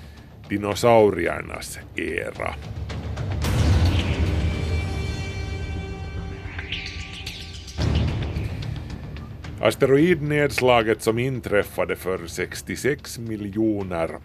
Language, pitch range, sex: Swedish, 90-110 Hz, male